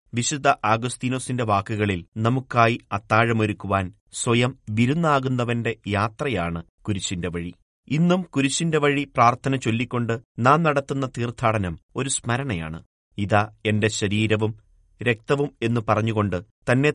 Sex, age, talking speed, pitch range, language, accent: male, 30-49, 95 wpm, 105-125 Hz, Malayalam, native